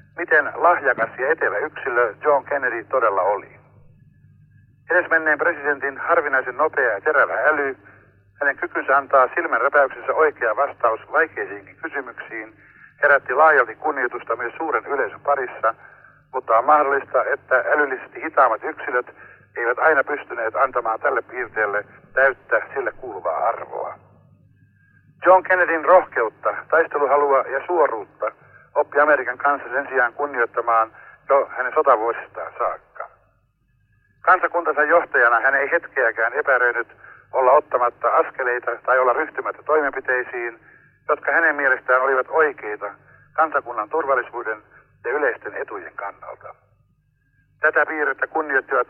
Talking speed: 115 wpm